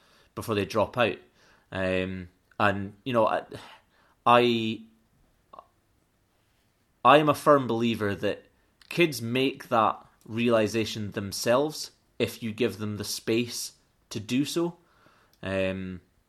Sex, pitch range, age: male, 100-120 Hz, 30-49